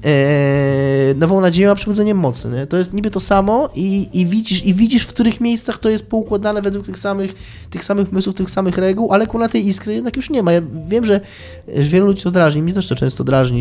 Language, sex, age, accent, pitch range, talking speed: Polish, male, 20-39, native, 125-185 Hz, 225 wpm